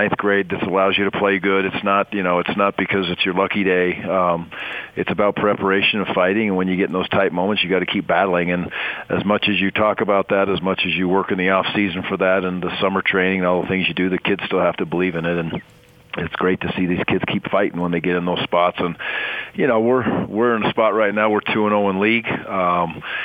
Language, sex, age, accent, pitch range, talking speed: English, male, 40-59, American, 85-100 Hz, 275 wpm